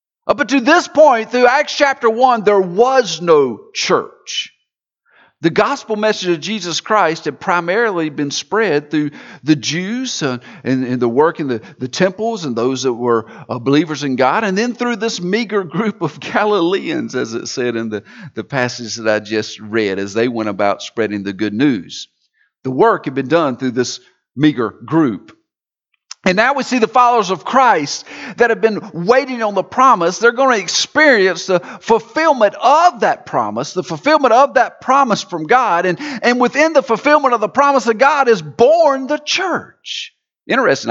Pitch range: 150-250 Hz